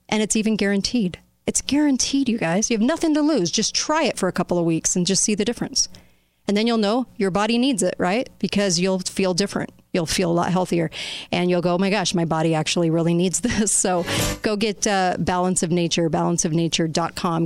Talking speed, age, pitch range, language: 220 wpm, 40-59, 175-220 Hz, English